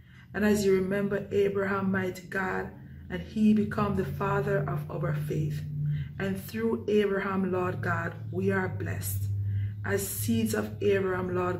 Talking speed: 145 wpm